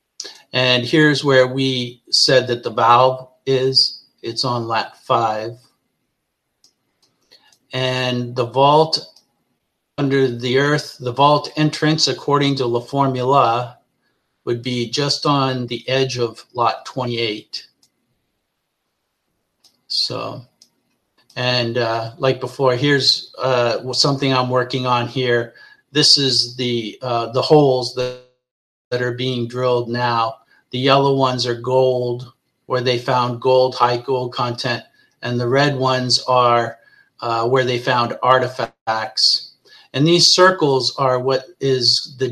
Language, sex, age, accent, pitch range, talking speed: English, male, 50-69, American, 120-135 Hz, 125 wpm